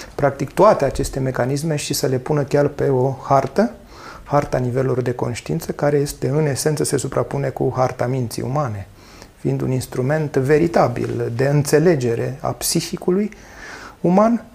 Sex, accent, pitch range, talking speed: male, native, 125-165 Hz, 145 wpm